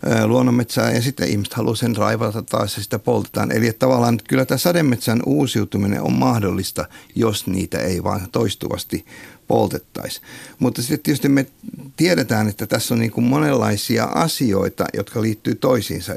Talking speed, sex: 155 wpm, male